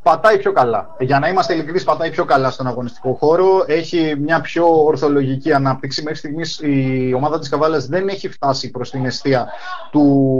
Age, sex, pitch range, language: 30-49, male, 145-190 Hz, Greek